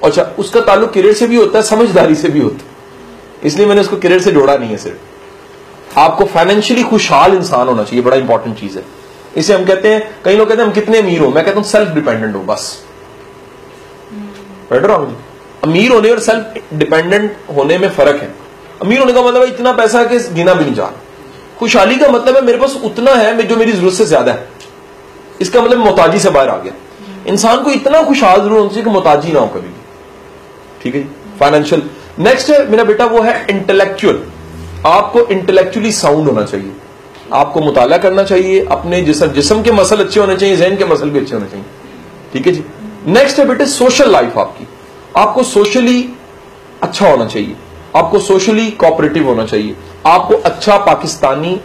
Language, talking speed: English, 160 wpm